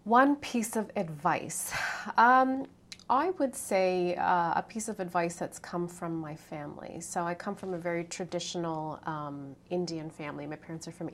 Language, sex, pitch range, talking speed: English, female, 170-195 Hz, 170 wpm